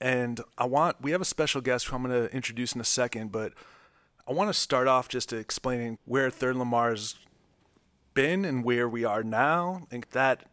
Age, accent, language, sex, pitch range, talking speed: 30-49, American, English, male, 115-135 Hz, 205 wpm